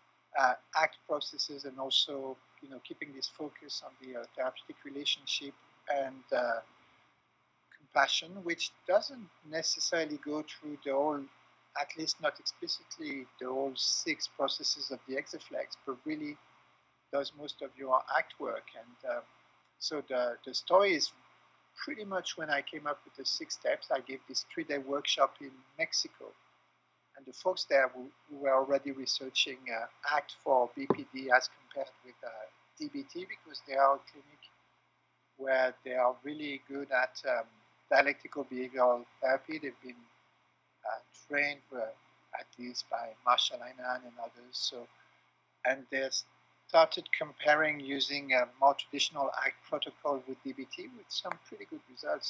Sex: male